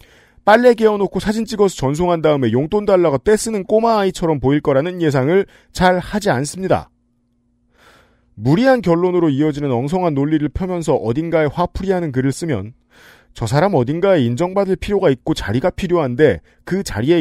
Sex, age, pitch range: male, 40-59, 120-180 Hz